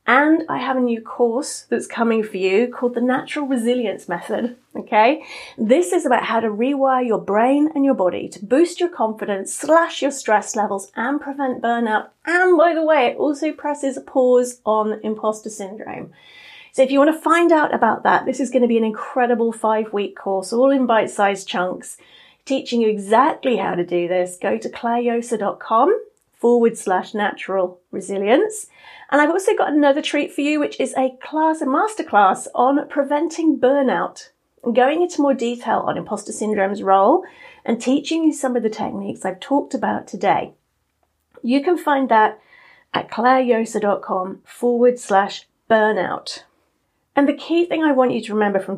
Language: English